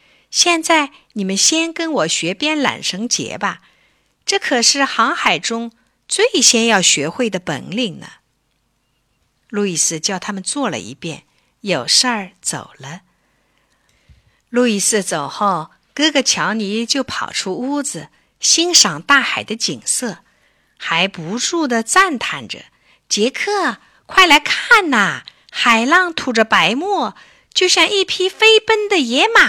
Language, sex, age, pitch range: Chinese, female, 50-69, 195-320 Hz